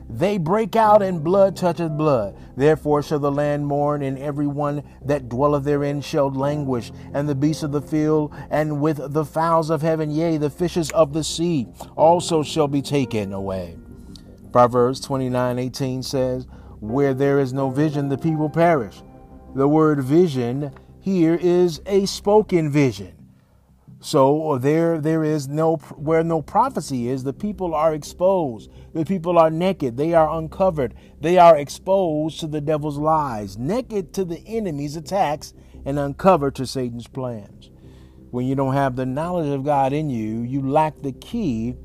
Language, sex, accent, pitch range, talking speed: English, male, American, 125-160 Hz, 165 wpm